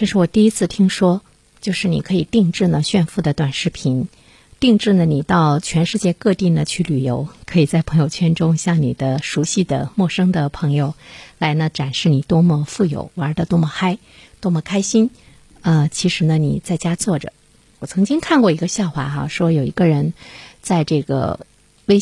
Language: Chinese